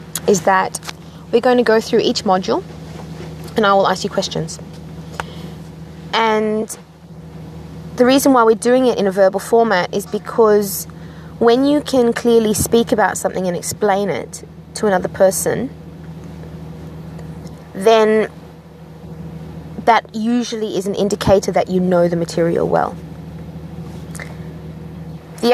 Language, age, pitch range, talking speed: English, 20-39, 165-220 Hz, 125 wpm